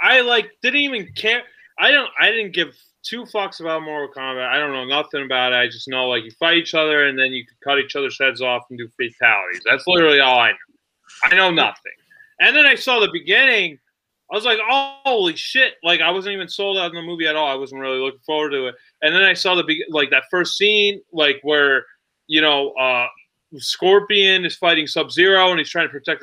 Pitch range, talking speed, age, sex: 150-215 Hz, 240 wpm, 20-39, male